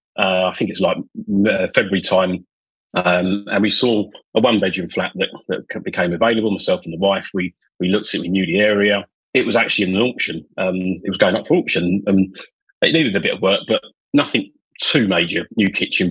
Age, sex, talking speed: 30-49, male, 210 wpm